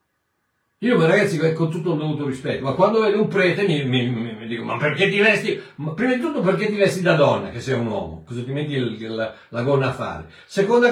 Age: 60-79